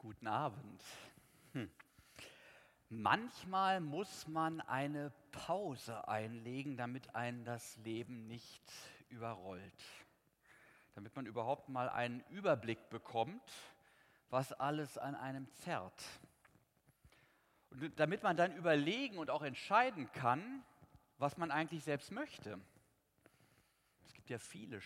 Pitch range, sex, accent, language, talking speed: 125-175 Hz, male, German, German, 110 wpm